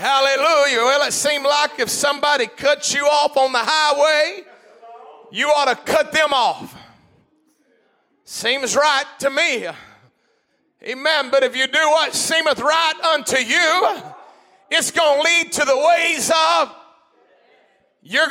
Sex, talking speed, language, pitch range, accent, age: male, 135 wpm, English, 290-360 Hz, American, 40-59